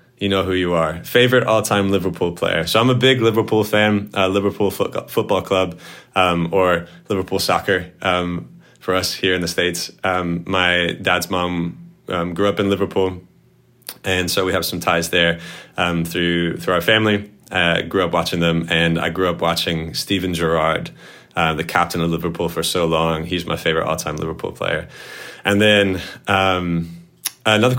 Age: 20-39